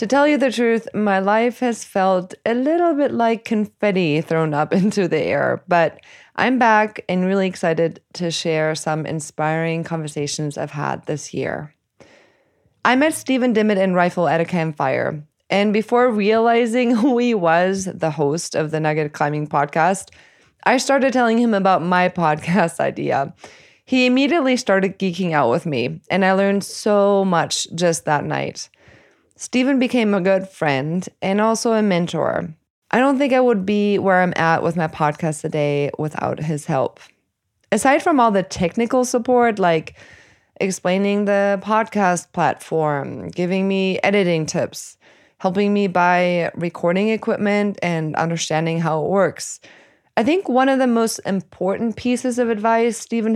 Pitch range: 165-230 Hz